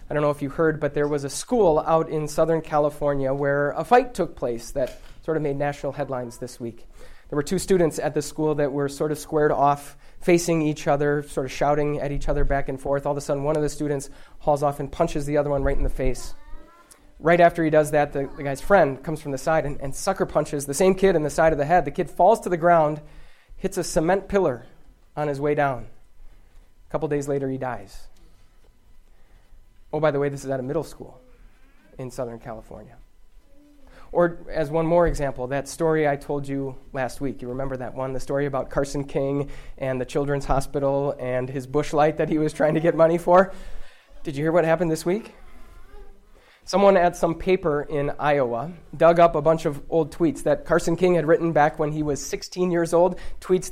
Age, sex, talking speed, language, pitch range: 20-39, male, 225 wpm, English, 140-170 Hz